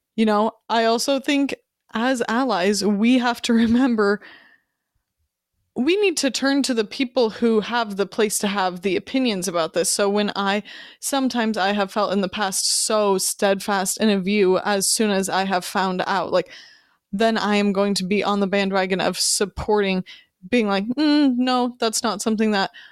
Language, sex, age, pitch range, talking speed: English, female, 20-39, 195-235 Hz, 185 wpm